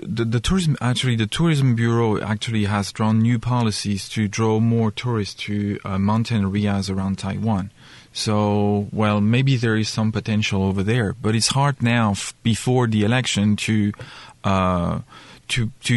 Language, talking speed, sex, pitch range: English, 160 wpm, male, 105-125 Hz